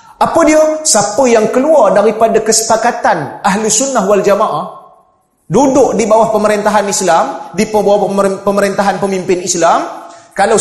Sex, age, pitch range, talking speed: male, 30-49, 175-250 Hz, 125 wpm